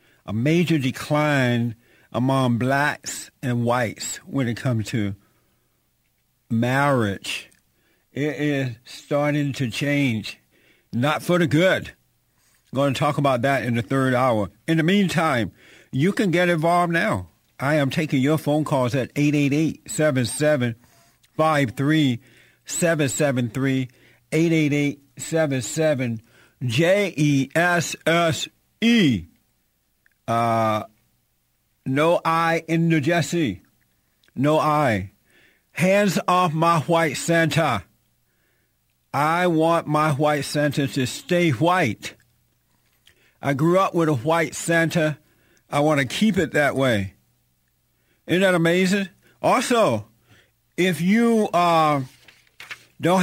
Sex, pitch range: male, 120-165 Hz